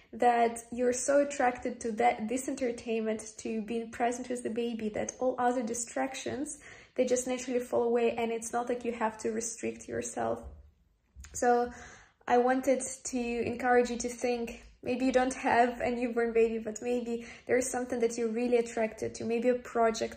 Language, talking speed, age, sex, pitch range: English, 180 wpm, 20-39, female, 225-250 Hz